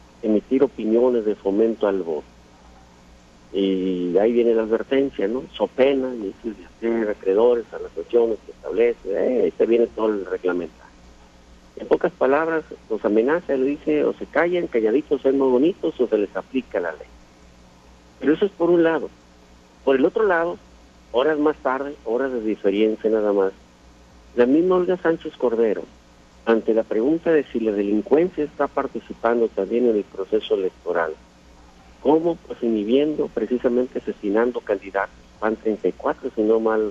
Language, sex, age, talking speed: Spanish, male, 50-69, 155 wpm